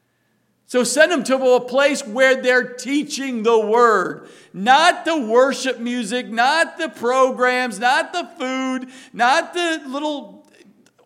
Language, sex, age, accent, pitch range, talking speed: English, male, 50-69, American, 195-260 Hz, 135 wpm